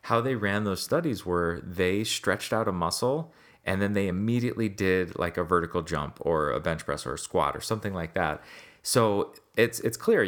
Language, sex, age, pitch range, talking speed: English, male, 30-49, 85-105 Hz, 205 wpm